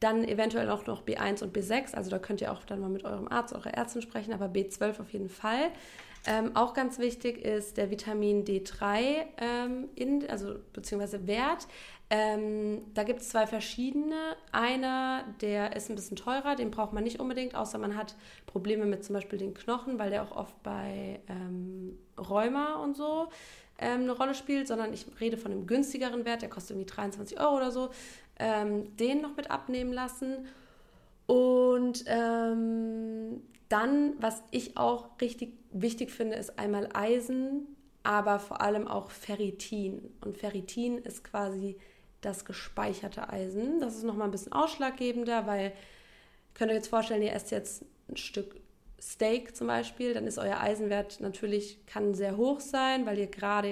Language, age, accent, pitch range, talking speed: German, 20-39, German, 205-245 Hz, 170 wpm